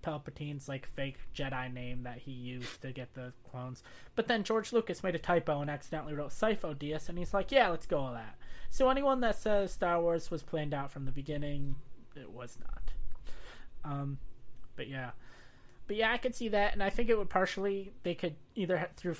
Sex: male